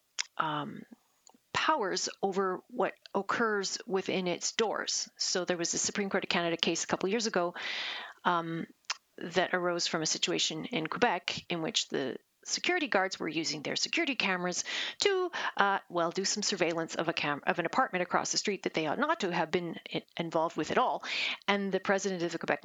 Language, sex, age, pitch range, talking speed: English, female, 40-59, 175-220 Hz, 190 wpm